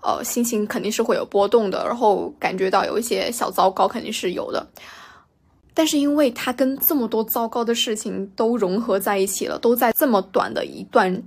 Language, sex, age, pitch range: Chinese, female, 10-29, 205-260 Hz